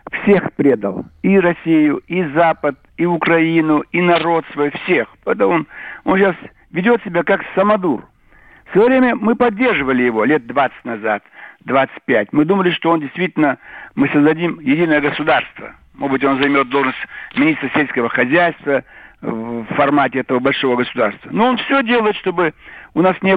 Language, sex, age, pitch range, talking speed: Russian, male, 60-79, 150-210 Hz, 155 wpm